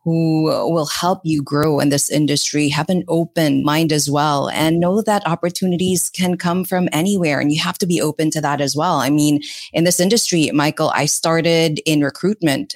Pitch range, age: 150-175 Hz, 30-49